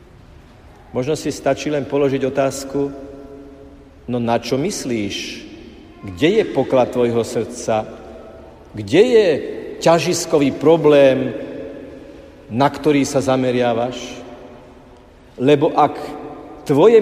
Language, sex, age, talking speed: Slovak, male, 50-69, 90 wpm